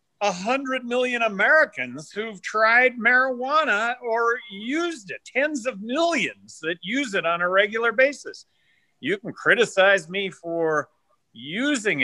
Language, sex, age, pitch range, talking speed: English, male, 50-69, 160-230 Hz, 125 wpm